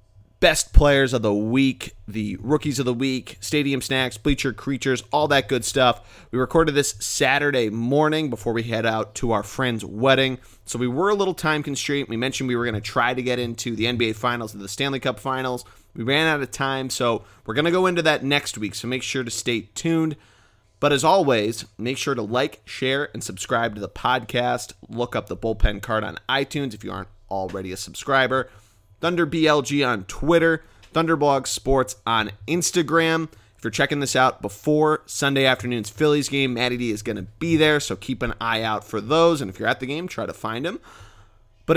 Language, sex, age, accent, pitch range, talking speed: English, male, 30-49, American, 110-145 Hz, 205 wpm